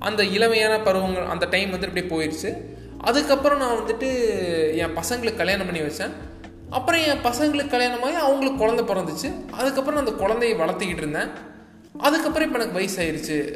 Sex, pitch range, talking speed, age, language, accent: male, 170-240 Hz, 145 wpm, 20-39, Tamil, native